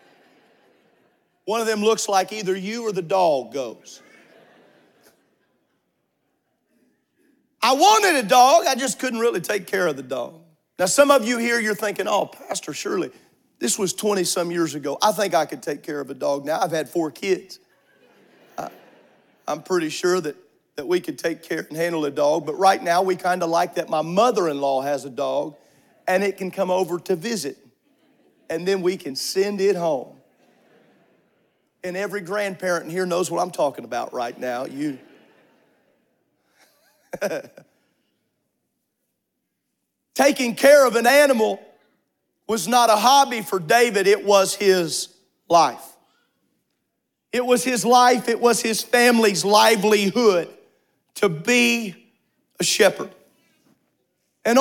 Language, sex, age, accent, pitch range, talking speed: English, male, 40-59, American, 175-235 Hz, 150 wpm